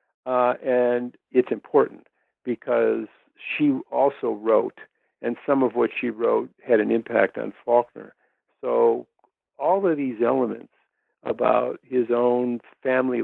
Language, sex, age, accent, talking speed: English, male, 60-79, American, 125 wpm